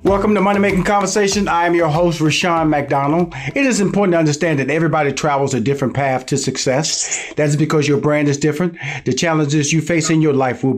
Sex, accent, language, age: male, American, English, 40-59